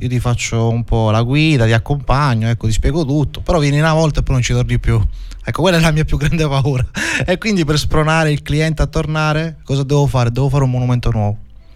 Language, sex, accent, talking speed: Italian, male, native, 240 wpm